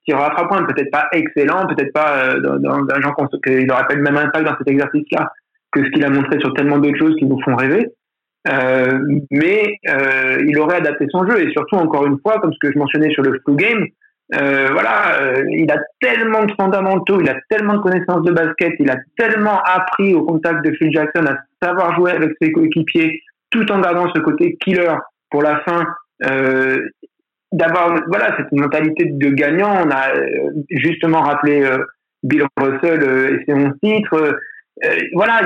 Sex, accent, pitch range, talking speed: male, French, 140-175 Hz, 190 wpm